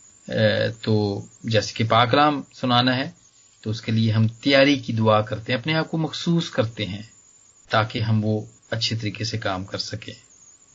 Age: 40-59